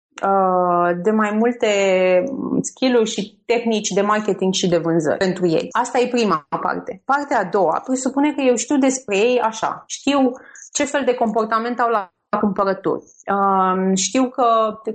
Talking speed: 155 wpm